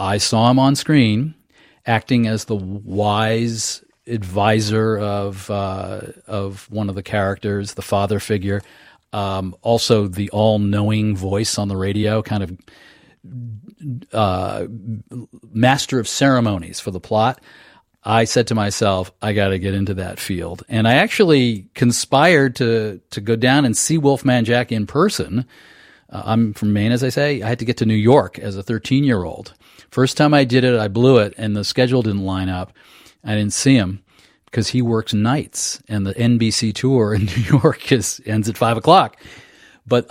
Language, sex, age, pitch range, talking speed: English, male, 40-59, 100-125 Hz, 170 wpm